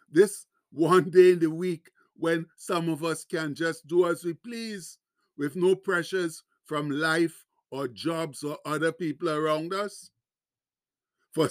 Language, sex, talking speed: English, male, 150 wpm